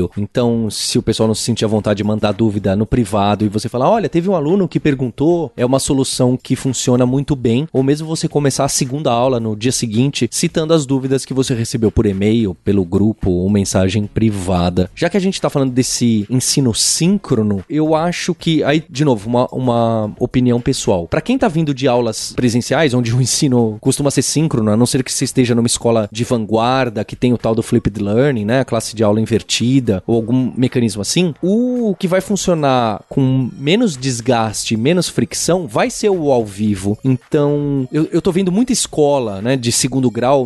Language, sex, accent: Portuguese, male, Brazilian